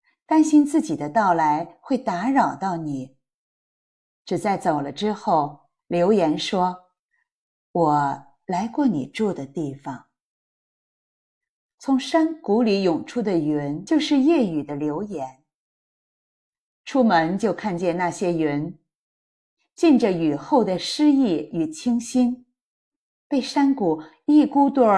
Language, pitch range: Chinese, 165-270 Hz